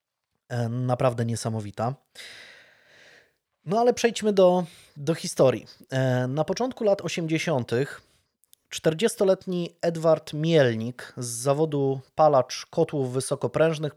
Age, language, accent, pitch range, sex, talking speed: 20-39, Polish, native, 125-160 Hz, male, 85 wpm